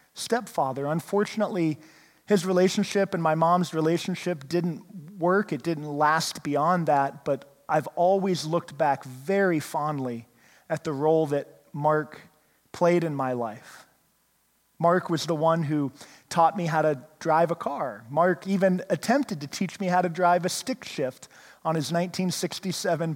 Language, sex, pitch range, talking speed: English, male, 150-185 Hz, 150 wpm